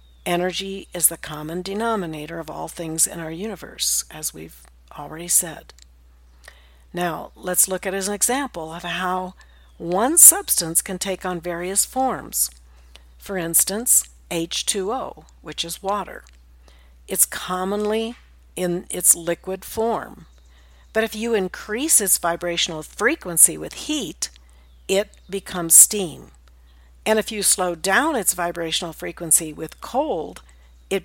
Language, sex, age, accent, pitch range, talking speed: English, female, 60-79, American, 150-195 Hz, 130 wpm